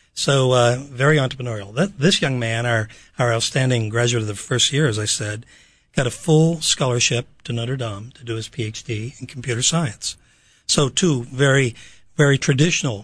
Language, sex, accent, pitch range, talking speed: English, male, American, 110-140 Hz, 170 wpm